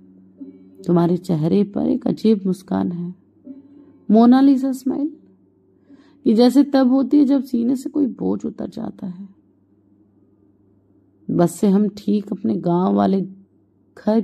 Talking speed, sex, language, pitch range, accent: 120 wpm, female, Hindi, 175-260 Hz, native